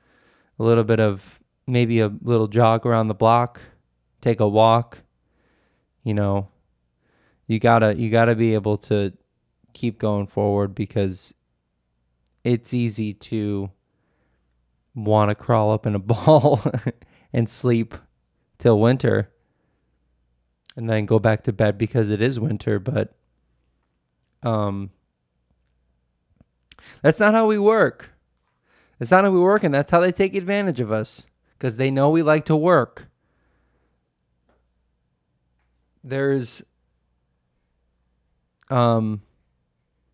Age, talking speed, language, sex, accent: 20-39, 120 wpm, English, male, American